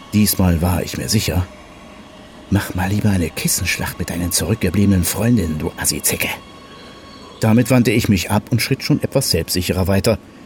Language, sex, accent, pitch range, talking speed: German, male, German, 95-130 Hz, 155 wpm